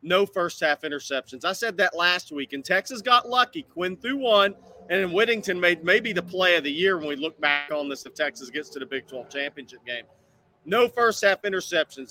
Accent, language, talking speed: American, English, 210 wpm